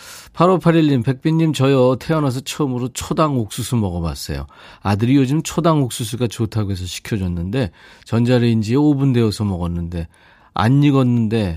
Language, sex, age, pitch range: Korean, male, 40-59, 95-135 Hz